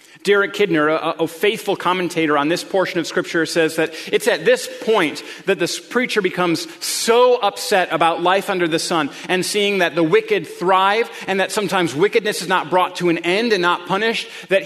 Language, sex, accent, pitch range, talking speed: English, male, American, 165-205 Hz, 190 wpm